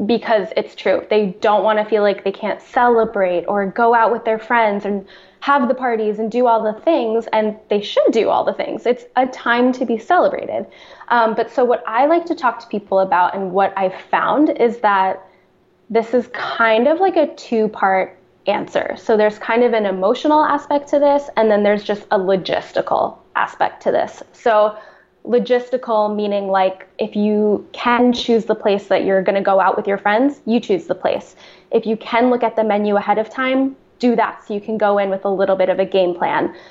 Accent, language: American, English